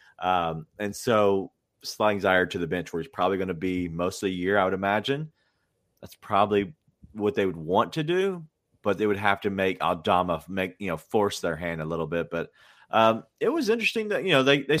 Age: 30-49